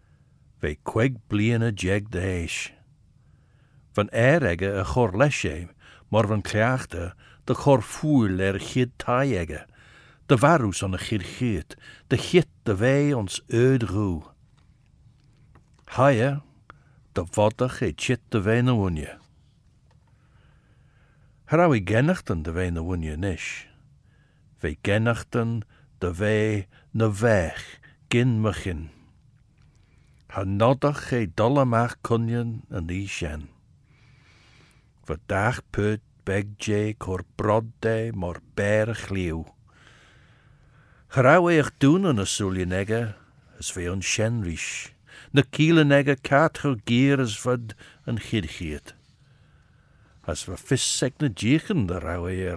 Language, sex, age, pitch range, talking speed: English, male, 60-79, 95-125 Hz, 110 wpm